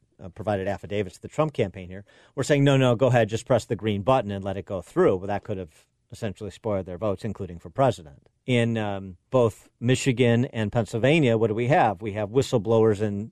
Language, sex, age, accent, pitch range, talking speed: English, male, 50-69, American, 100-120 Hz, 215 wpm